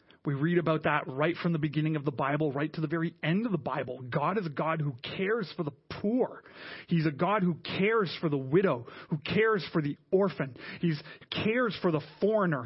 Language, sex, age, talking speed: English, male, 30-49, 220 wpm